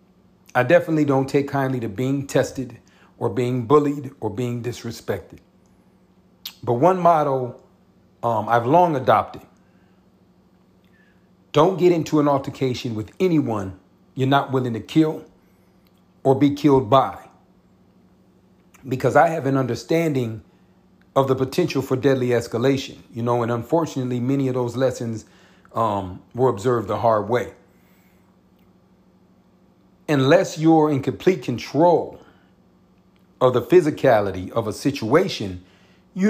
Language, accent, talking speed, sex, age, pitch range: English, American, 120 wpm, male, 40-59, 115-150 Hz